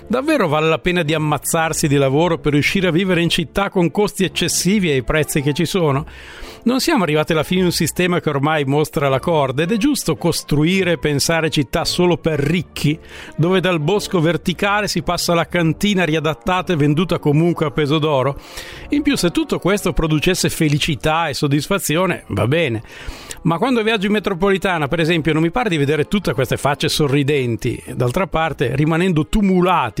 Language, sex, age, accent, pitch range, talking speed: Italian, male, 50-69, native, 150-185 Hz, 180 wpm